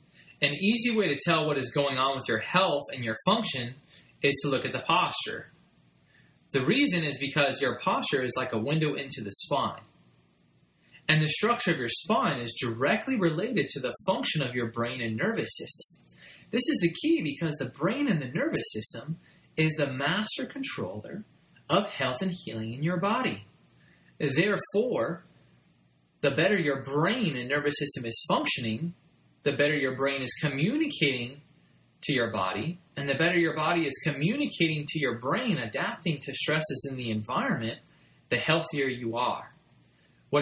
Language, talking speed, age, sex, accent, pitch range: English, 170 wpm, 30-49, male, American, 125-170 Hz